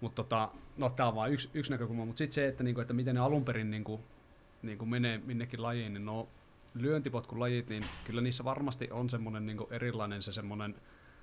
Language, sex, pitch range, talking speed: Finnish, male, 105-125 Hz, 200 wpm